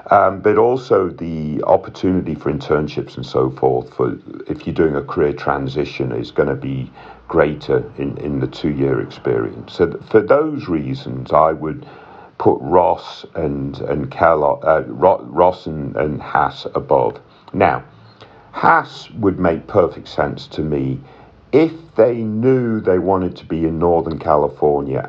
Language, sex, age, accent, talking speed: English, male, 50-69, British, 150 wpm